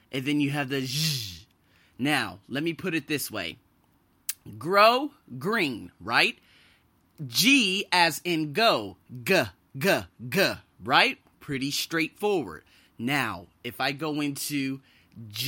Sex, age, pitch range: male, 30-49, 120-175 Hz